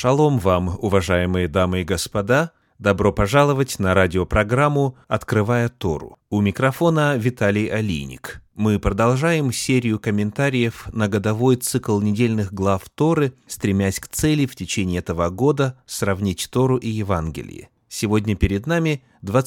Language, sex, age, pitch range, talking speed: Russian, male, 30-49, 100-130 Hz, 125 wpm